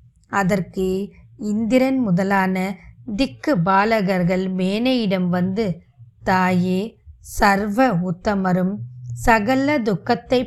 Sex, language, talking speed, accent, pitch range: female, Tamil, 70 wpm, native, 195-260 Hz